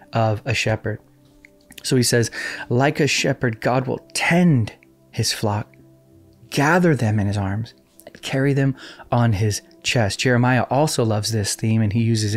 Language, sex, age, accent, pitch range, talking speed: English, male, 20-39, American, 110-140 Hz, 155 wpm